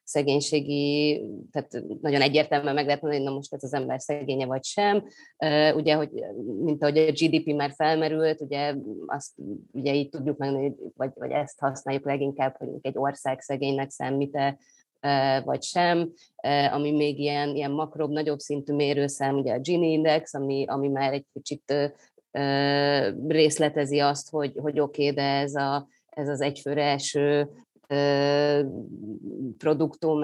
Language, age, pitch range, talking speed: Hungarian, 30-49, 140-155 Hz, 155 wpm